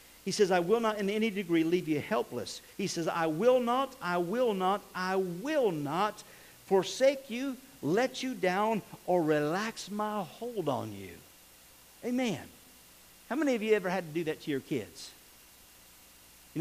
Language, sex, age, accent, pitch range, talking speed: English, male, 50-69, American, 155-215 Hz, 170 wpm